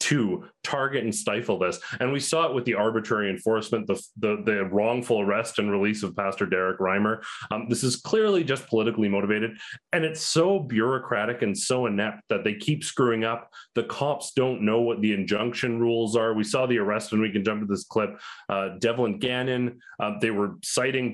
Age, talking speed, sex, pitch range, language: 30-49, 200 wpm, male, 110-135 Hz, English